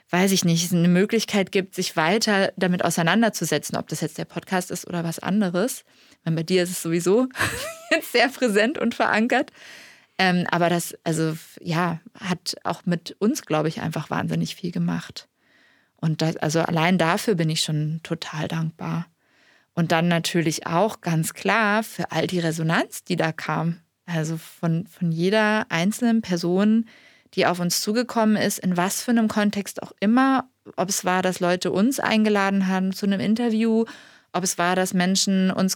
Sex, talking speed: female, 170 wpm